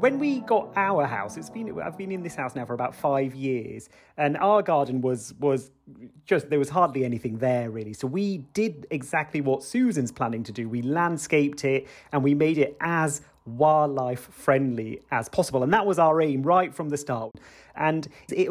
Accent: British